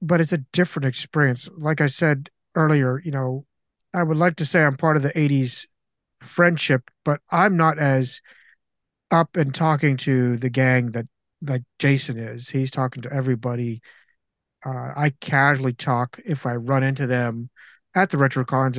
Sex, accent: male, American